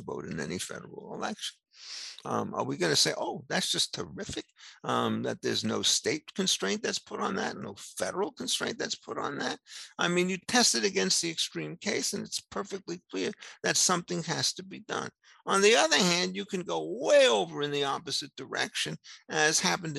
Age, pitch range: 50-69, 140-190 Hz